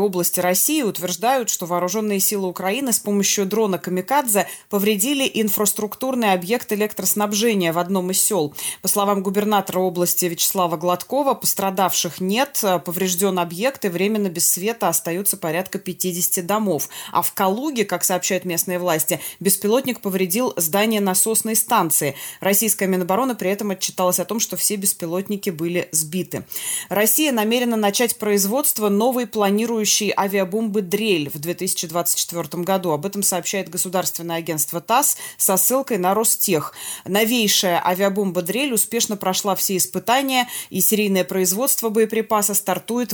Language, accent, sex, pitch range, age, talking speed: Russian, native, female, 180-215 Hz, 20-39, 130 wpm